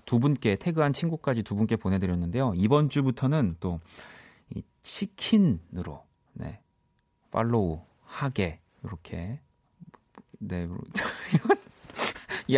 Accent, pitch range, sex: native, 95-150 Hz, male